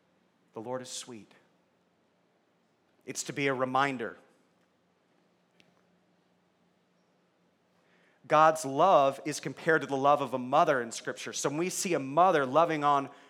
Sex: male